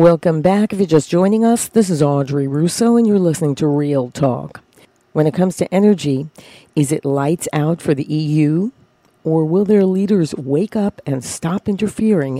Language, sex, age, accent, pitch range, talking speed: English, female, 50-69, American, 145-185 Hz, 185 wpm